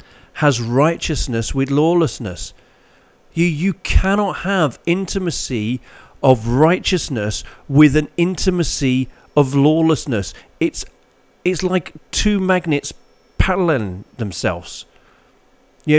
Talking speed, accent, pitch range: 90 wpm, British, 120-170 Hz